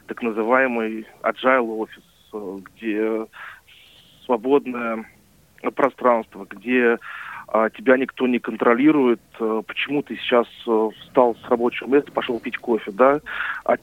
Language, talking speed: Russian, 105 wpm